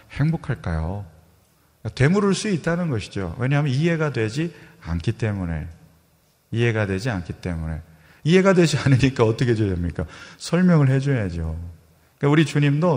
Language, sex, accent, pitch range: Korean, male, native, 100-145 Hz